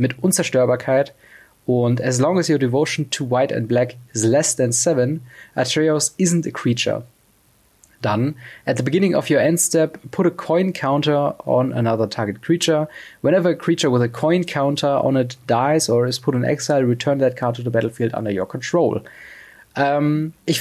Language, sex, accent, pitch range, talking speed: German, male, German, 120-150 Hz, 180 wpm